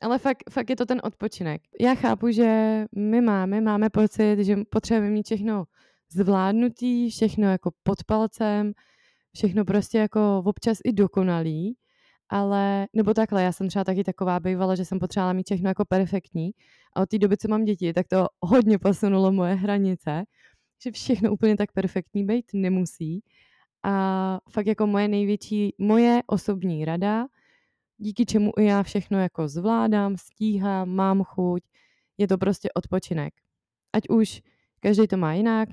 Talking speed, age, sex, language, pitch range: 155 wpm, 20-39, female, Czech, 185-215 Hz